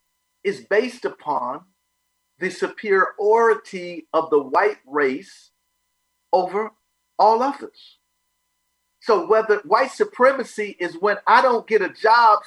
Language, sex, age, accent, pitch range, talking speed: English, male, 40-59, American, 205-270 Hz, 110 wpm